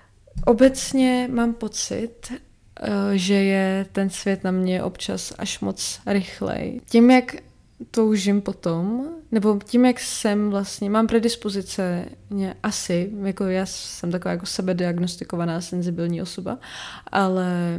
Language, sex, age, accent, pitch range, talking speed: Czech, female, 20-39, native, 185-225 Hz, 120 wpm